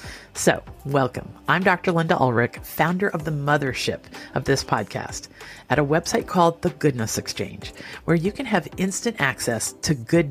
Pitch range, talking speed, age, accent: 130-175 Hz, 165 wpm, 50-69, American